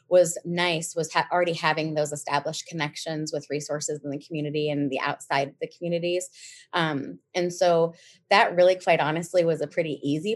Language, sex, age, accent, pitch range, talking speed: English, female, 20-39, American, 150-175 Hz, 180 wpm